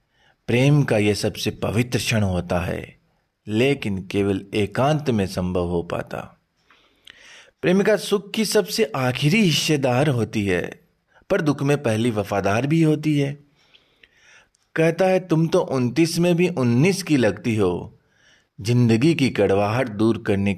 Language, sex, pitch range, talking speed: Hindi, male, 110-165 Hz, 135 wpm